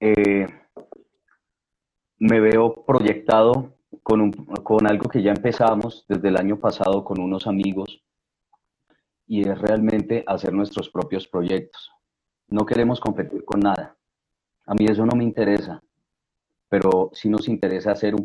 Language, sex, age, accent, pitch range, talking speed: Spanish, male, 30-49, Colombian, 95-110 Hz, 140 wpm